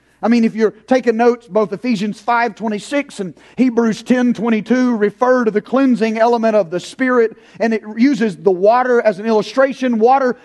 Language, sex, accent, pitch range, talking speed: English, male, American, 200-250 Hz, 165 wpm